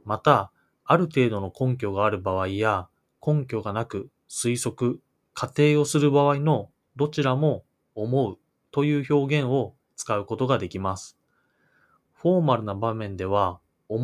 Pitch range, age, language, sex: 100-135 Hz, 20-39, Japanese, male